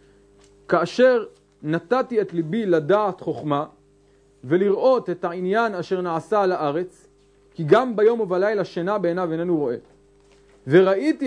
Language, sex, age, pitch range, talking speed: English, male, 30-49, 150-220 Hz, 115 wpm